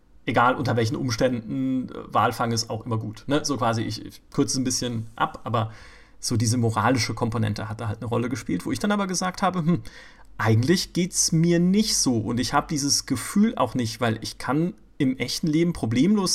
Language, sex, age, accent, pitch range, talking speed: German, male, 40-59, German, 125-170 Hz, 200 wpm